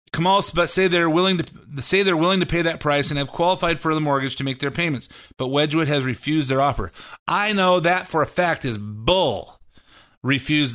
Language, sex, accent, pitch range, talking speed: English, male, American, 130-180 Hz, 210 wpm